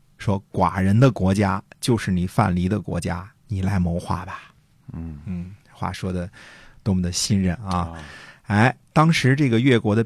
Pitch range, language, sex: 95-120 Hz, Chinese, male